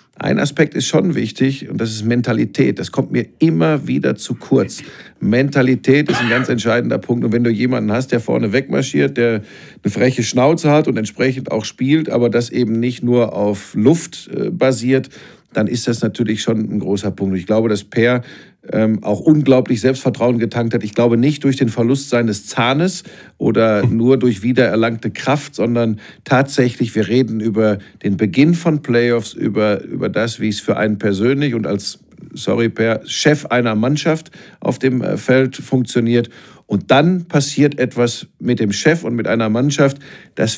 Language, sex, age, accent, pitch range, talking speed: German, male, 50-69, German, 115-135 Hz, 175 wpm